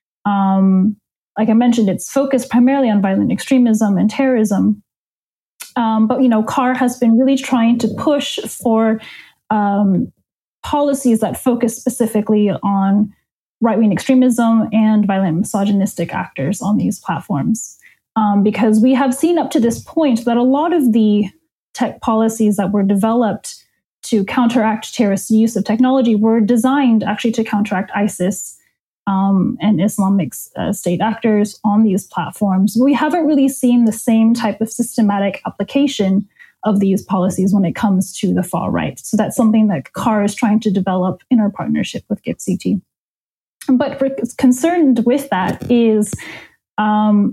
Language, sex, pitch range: English, female, 205-245 Hz